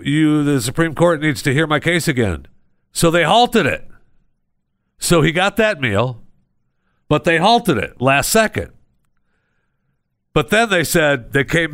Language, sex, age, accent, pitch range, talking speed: English, male, 50-69, American, 110-175 Hz, 160 wpm